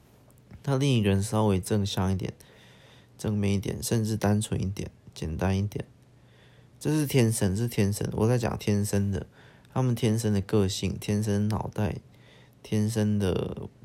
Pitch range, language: 100-120 Hz, Chinese